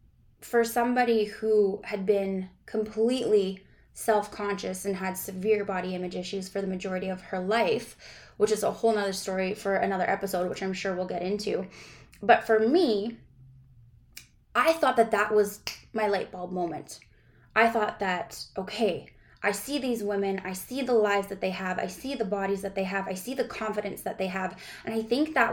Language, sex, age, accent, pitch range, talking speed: English, female, 10-29, American, 195-230 Hz, 185 wpm